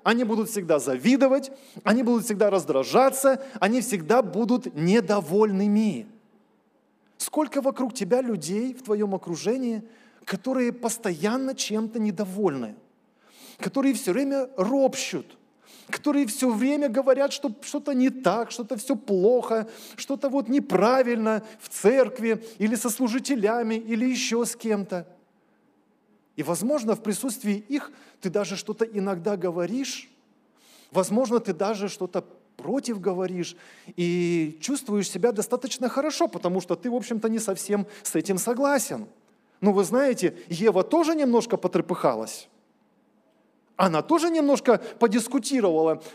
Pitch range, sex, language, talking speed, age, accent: 195-255 Hz, male, Russian, 120 wpm, 20-39, native